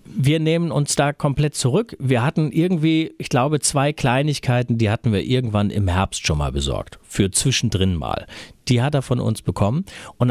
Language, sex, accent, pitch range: German, male, German, 100-150 Hz